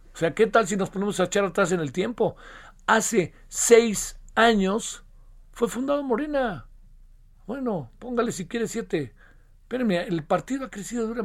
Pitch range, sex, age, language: 150-225 Hz, male, 50-69, Spanish